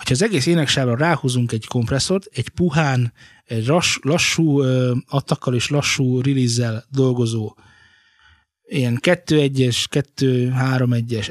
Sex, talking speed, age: male, 120 wpm, 20-39